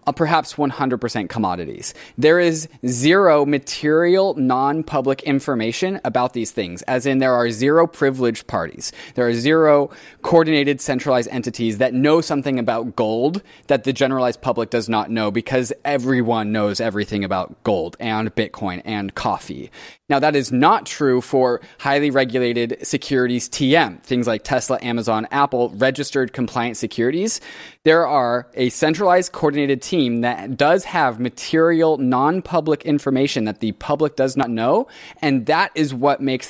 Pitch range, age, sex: 120-155 Hz, 20-39, male